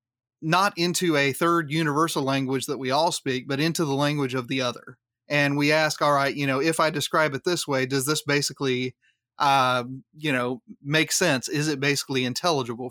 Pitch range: 130-155 Hz